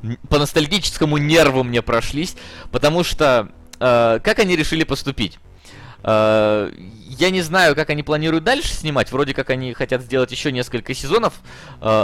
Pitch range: 110-140 Hz